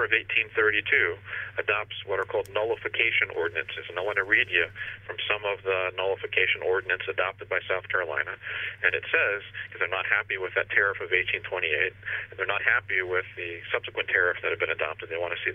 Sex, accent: male, American